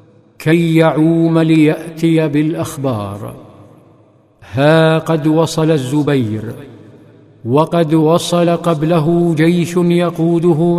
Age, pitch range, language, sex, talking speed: 50-69, 150-165 Hz, Arabic, male, 70 wpm